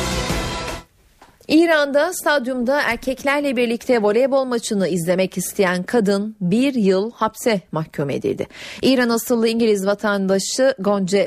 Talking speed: 100 wpm